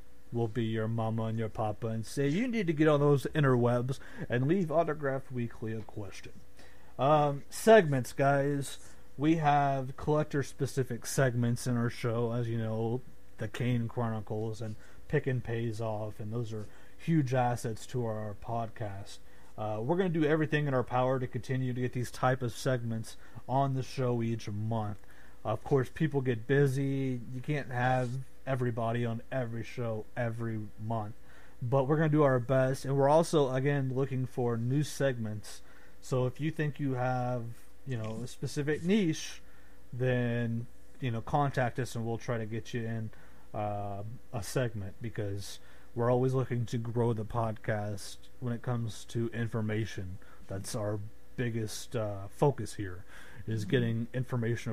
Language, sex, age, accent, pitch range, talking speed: English, male, 40-59, American, 110-135 Hz, 165 wpm